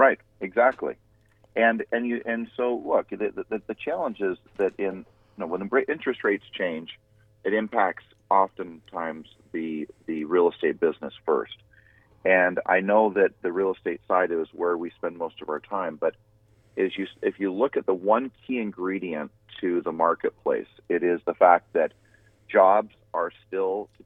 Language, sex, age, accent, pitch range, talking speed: English, male, 40-59, American, 90-110 Hz, 175 wpm